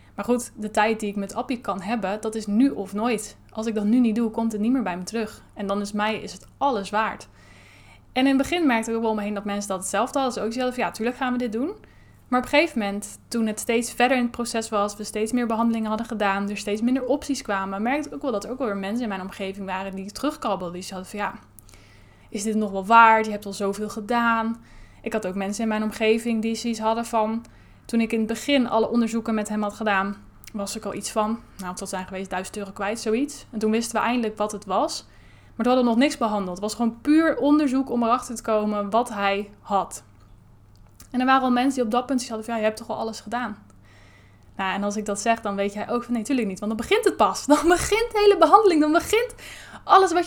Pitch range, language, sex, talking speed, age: 200-245 Hz, Dutch, female, 270 wpm, 10-29